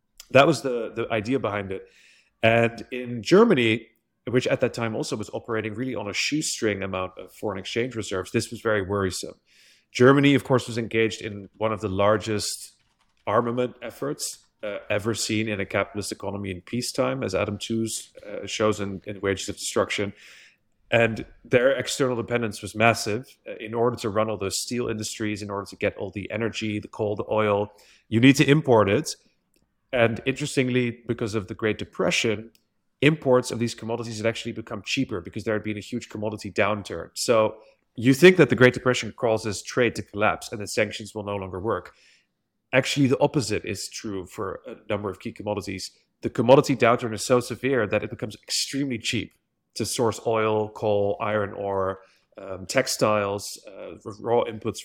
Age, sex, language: 30-49, male, English